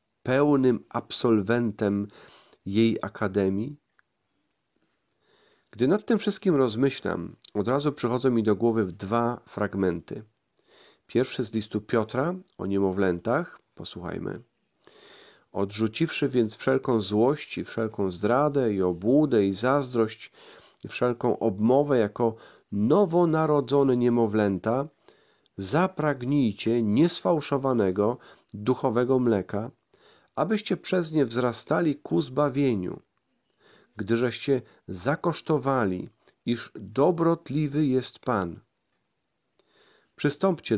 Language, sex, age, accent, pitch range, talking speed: Polish, male, 40-59, native, 110-145 Hz, 85 wpm